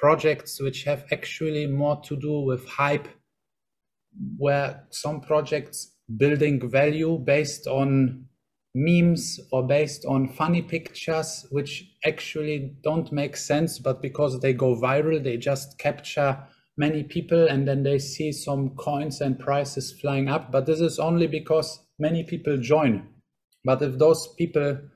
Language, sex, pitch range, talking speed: Arabic, male, 135-155 Hz, 140 wpm